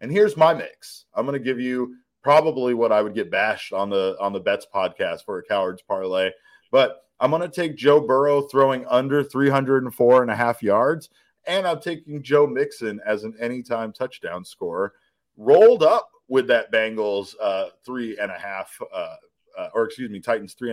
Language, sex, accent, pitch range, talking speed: English, male, American, 105-165 Hz, 190 wpm